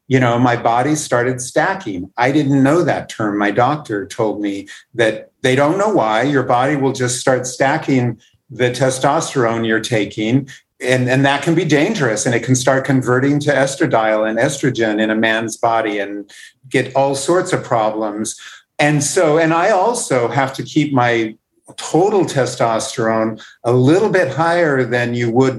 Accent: American